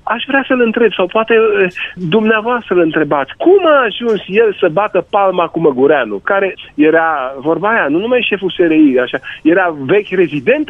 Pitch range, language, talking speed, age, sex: 155-235 Hz, Romanian, 165 wpm, 40-59, male